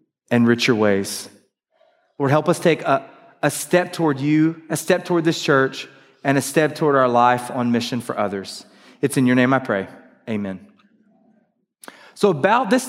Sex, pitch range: male, 140-185 Hz